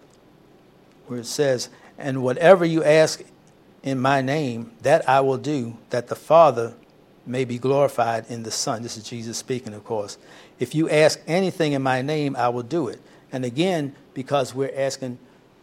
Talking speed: 175 wpm